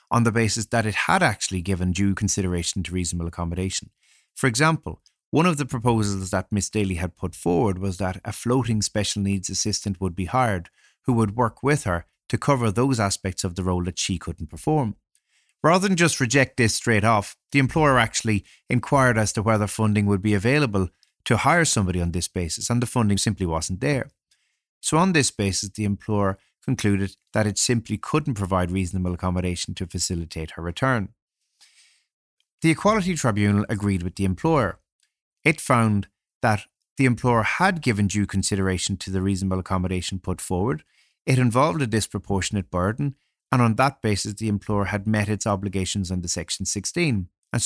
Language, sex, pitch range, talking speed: English, male, 95-125 Hz, 175 wpm